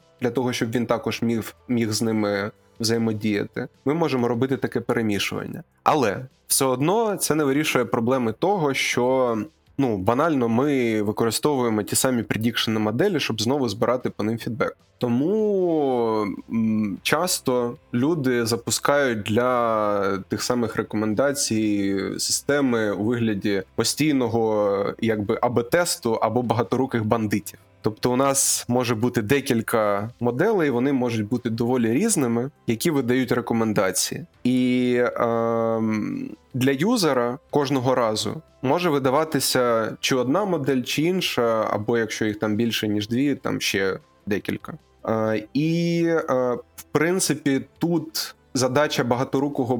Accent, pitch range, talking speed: native, 110-140 Hz, 120 wpm